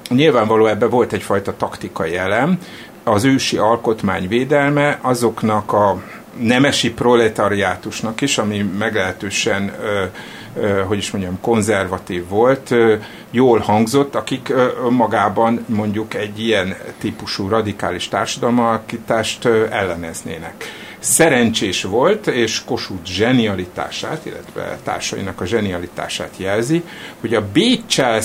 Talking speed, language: 100 wpm, Hungarian